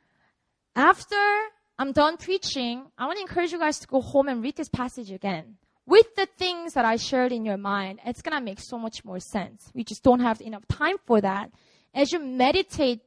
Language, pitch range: English, 235-320 Hz